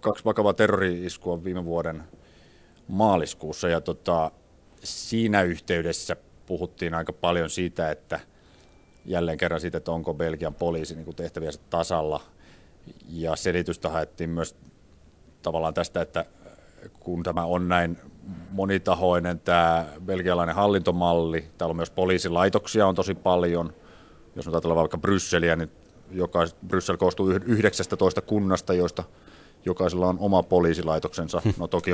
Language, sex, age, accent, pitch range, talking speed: Finnish, male, 30-49, native, 85-95 Hz, 120 wpm